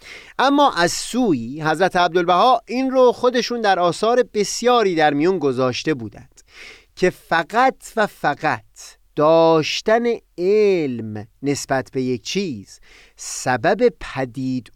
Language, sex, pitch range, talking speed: Persian, male, 145-225 Hz, 110 wpm